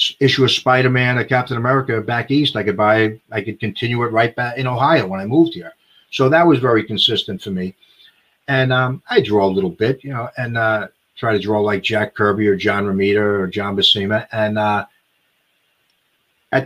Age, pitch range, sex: 40-59, 110-135 Hz, male